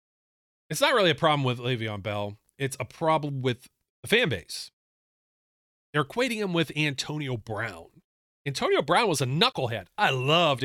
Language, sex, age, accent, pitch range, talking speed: English, male, 40-59, American, 115-165 Hz, 160 wpm